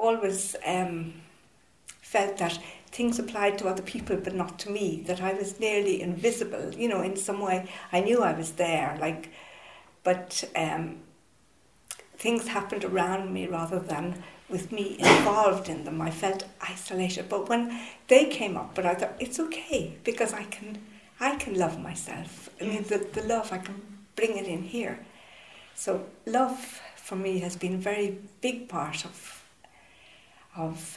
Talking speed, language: 165 wpm, English